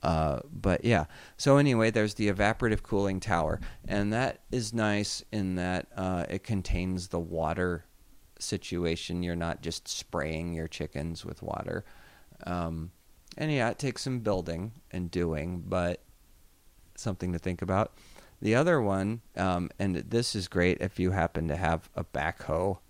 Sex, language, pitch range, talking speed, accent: male, English, 85-100 Hz, 155 wpm, American